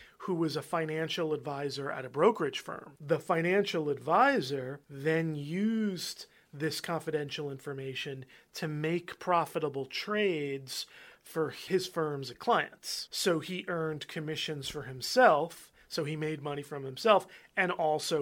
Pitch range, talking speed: 145-175 Hz, 130 wpm